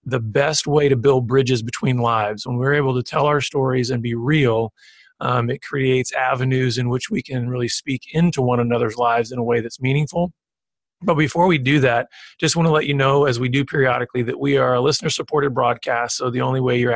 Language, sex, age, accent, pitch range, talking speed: English, male, 40-59, American, 125-155 Hz, 225 wpm